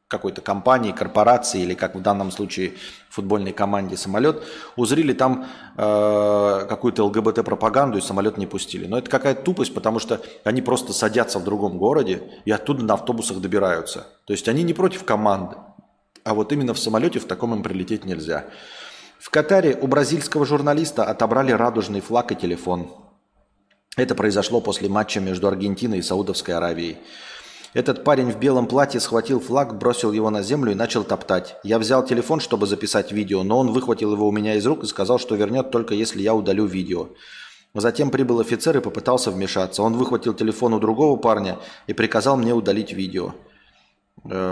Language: Russian